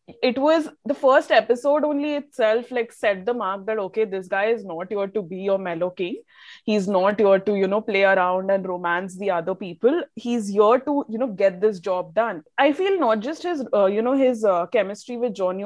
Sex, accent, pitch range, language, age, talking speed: female, Indian, 195-255 Hz, English, 20-39, 220 wpm